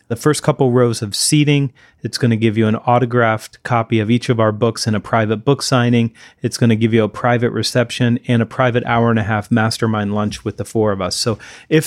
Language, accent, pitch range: English, American, 110-125 Hz